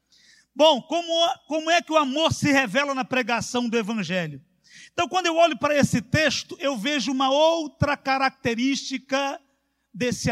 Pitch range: 195-265 Hz